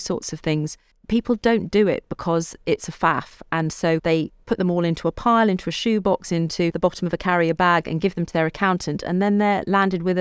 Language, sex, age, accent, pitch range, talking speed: English, female, 40-59, British, 160-190 Hz, 240 wpm